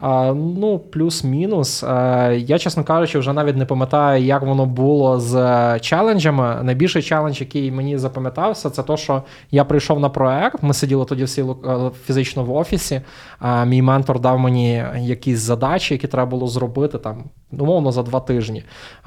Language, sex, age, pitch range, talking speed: Ukrainian, male, 20-39, 130-155 Hz, 150 wpm